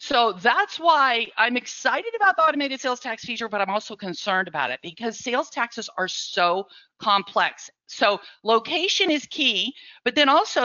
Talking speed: 170 wpm